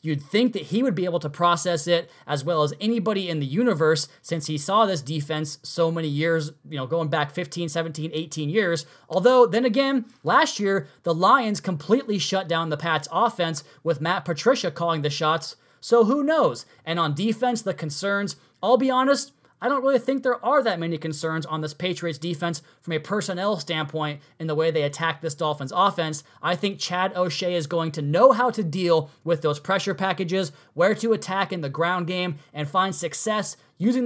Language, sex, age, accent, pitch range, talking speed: English, male, 20-39, American, 155-195 Hz, 200 wpm